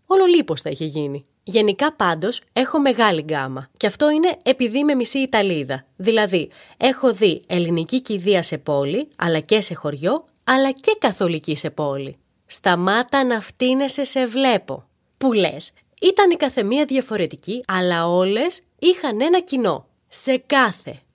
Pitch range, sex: 175-280 Hz, female